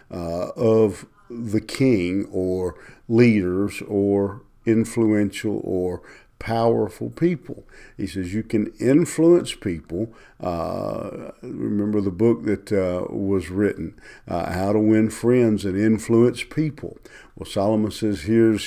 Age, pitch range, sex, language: 50-69, 95-115 Hz, male, English